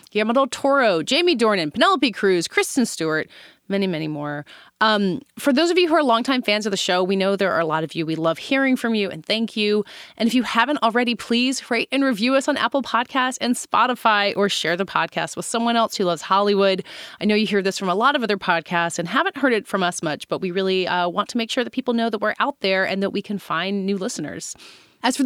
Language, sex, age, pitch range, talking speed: English, female, 30-49, 170-250 Hz, 250 wpm